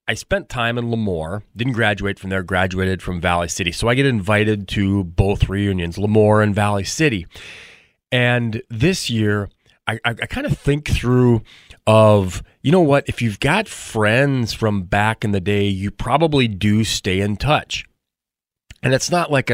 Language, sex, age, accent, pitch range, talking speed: English, male, 30-49, American, 100-120 Hz, 170 wpm